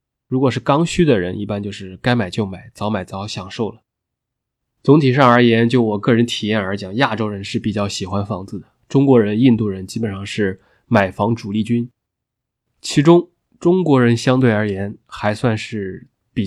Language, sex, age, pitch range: Chinese, male, 20-39, 105-125 Hz